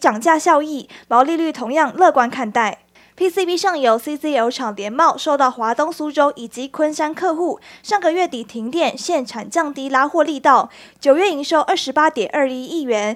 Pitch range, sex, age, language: 255-325 Hz, female, 20-39, Chinese